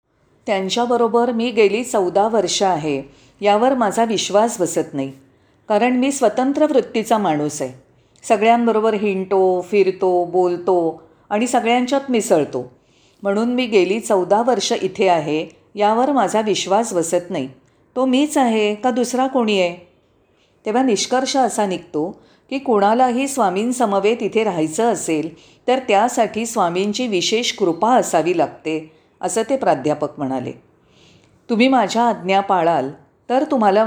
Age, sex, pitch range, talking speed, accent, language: 40-59, female, 165-235 Hz, 125 wpm, native, Marathi